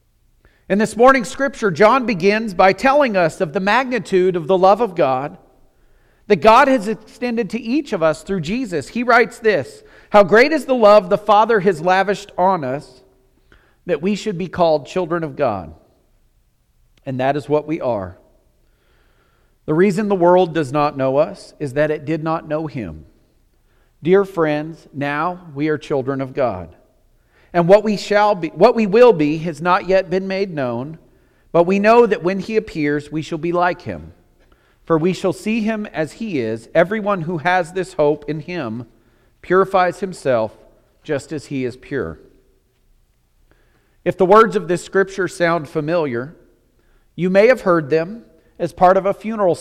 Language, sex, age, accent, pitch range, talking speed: English, male, 40-59, American, 150-205 Hz, 175 wpm